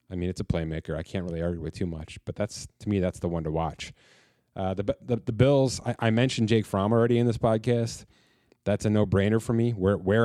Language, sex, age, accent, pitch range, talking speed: English, male, 30-49, American, 90-110 Hz, 245 wpm